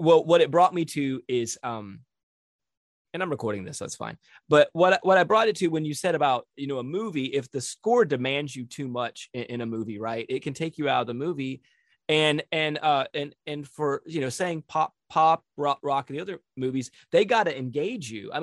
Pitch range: 120-160 Hz